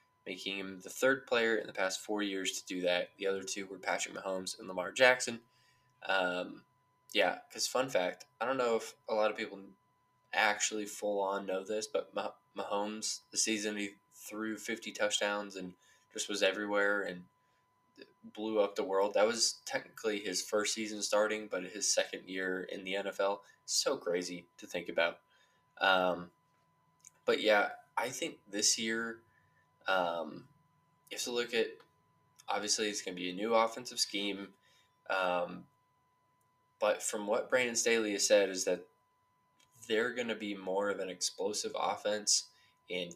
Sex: male